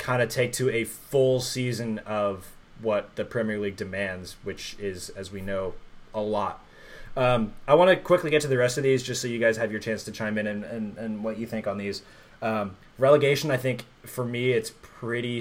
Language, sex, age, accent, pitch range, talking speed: English, male, 20-39, American, 110-130 Hz, 220 wpm